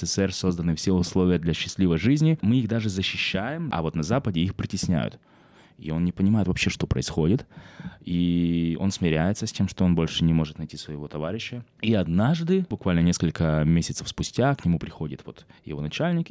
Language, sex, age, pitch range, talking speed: Russian, male, 20-39, 80-110 Hz, 180 wpm